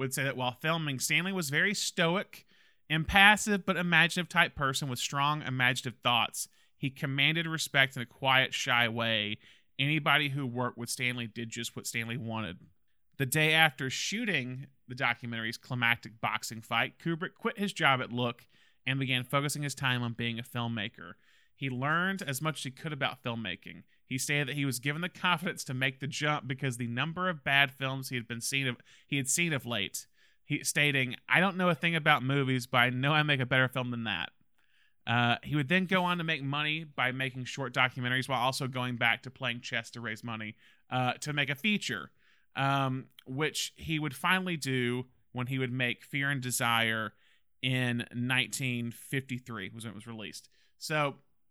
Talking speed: 190 wpm